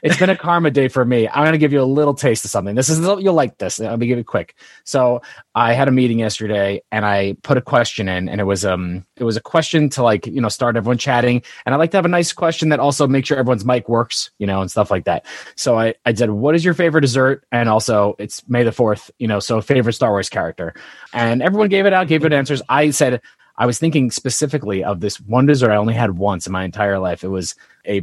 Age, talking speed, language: 30-49, 270 wpm, English